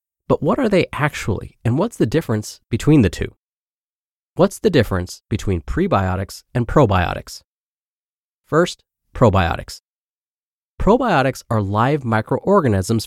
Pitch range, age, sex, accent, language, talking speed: 100-130 Hz, 30-49, male, American, English, 115 wpm